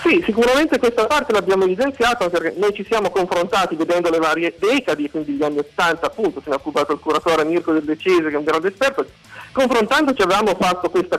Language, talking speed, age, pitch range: Italian, 205 wpm, 40-59, 160-215 Hz